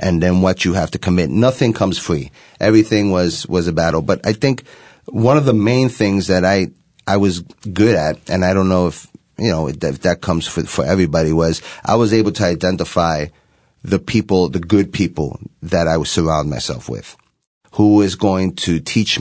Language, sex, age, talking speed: English, male, 30-49, 200 wpm